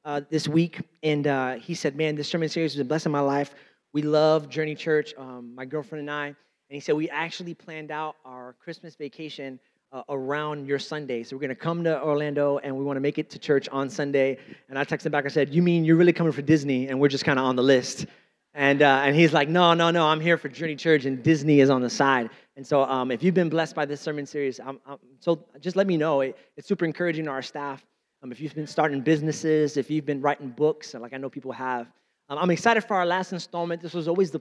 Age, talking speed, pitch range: 30-49, 260 wpm, 135-160 Hz